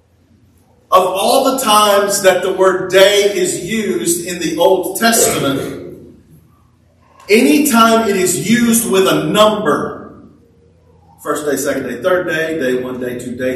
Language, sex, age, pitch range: English, male, 40-59, 145-235 Hz